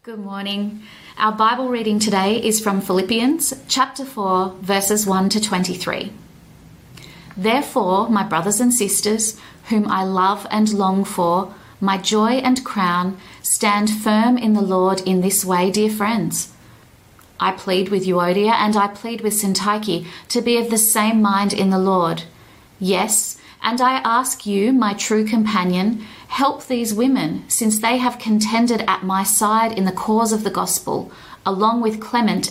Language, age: English, 30-49